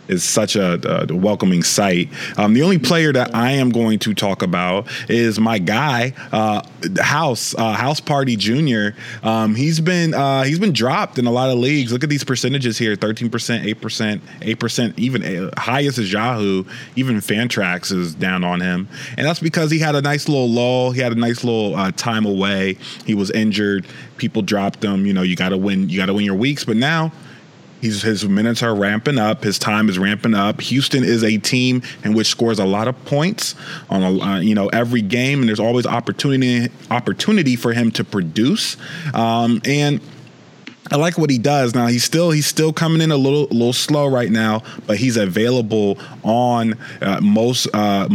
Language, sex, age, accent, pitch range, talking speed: English, male, 20-39, American, 105-130 Hz, 195 wpm